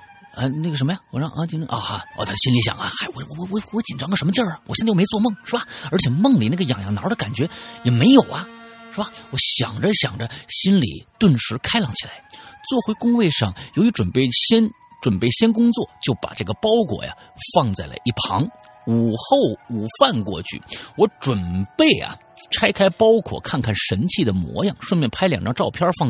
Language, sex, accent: Chinese, male, native